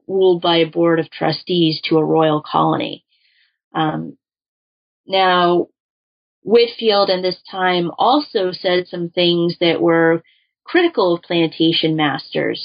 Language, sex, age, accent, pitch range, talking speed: English, female, 30-49, American, 160-185 Hz, 125 wpm